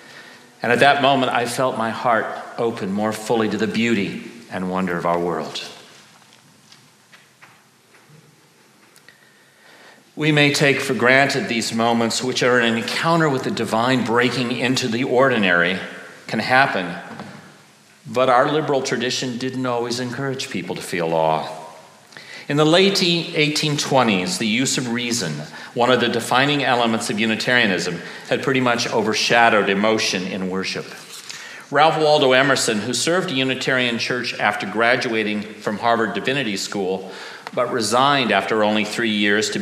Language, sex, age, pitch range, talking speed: English, male, 40-59, 105-130 Hz, 140 wpm